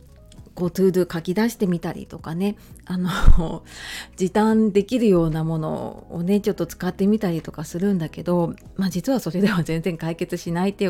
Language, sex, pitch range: Japanese, female, 175-250 Hz